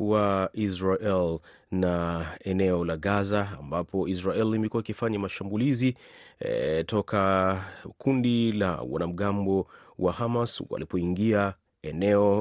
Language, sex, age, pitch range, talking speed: Swahili, male, 30-49, 95-110 Hz, 95 wpm